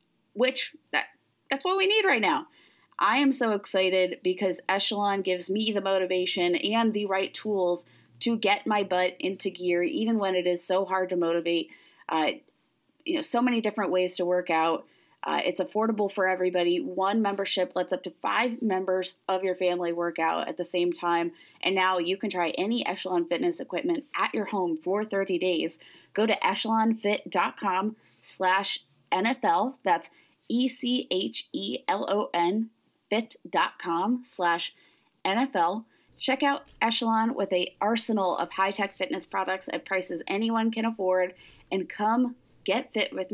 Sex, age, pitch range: female, 30-49, 180-220 Hz